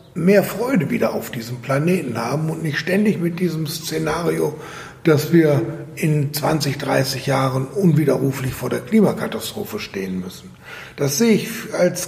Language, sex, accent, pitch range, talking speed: German, male, German, 155-190 Hz, 145 wpm